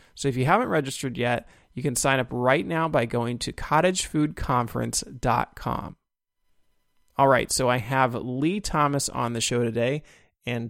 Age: 30-49